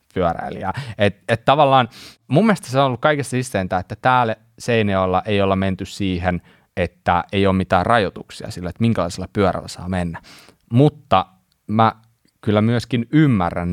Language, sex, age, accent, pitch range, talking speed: Finnish, male, 20-39, native, 90-115 Hz, 145 wpm